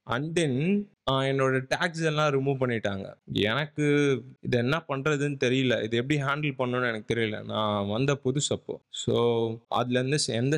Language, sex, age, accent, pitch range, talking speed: Tamil, male, 20-39, native, 115-145 Hz, 160 wpm